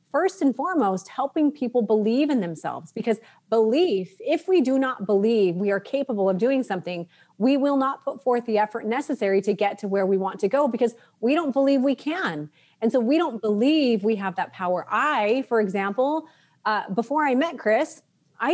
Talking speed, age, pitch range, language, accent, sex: 195 wpm, 30-49, 200-260 Hz, English, American, female